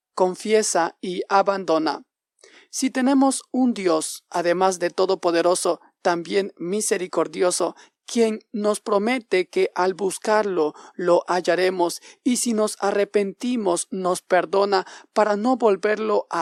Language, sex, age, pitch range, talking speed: Spanish, male, 40-59, 180-230 Hz, 110 wpm